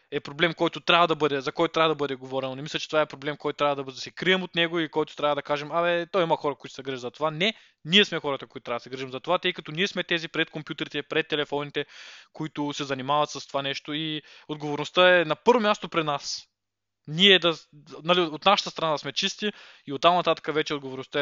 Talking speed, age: 250 wpm, 20-39